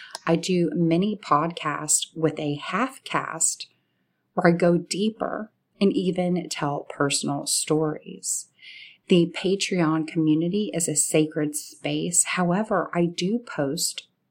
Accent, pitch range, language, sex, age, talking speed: American, 155-185 Hz, English, female, 30-49, 115 wpm